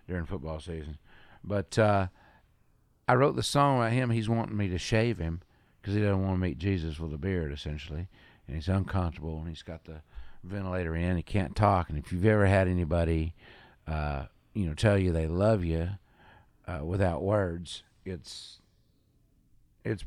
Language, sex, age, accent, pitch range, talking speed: English, male, 50-69, American, 85-95 Hz, 175 wpm